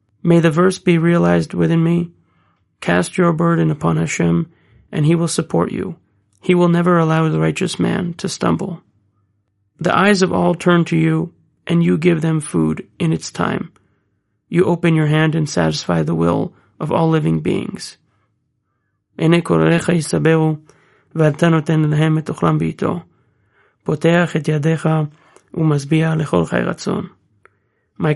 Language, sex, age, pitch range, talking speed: English, male, 30-49, 100-170 Hz, 115 wpm